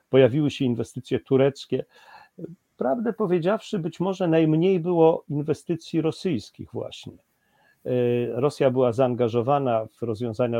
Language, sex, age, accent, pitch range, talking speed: Polish, male, 40-59, native, 115-140 Hz, 100 wpm